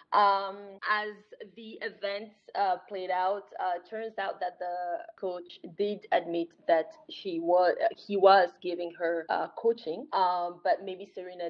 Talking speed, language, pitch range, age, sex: 150 wpm, English, 180-230 Hz, 20-39, female